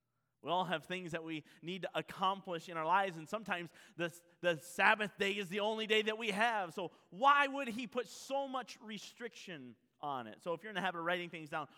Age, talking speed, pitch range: 30-49, 230 wpm, 160-230 Hz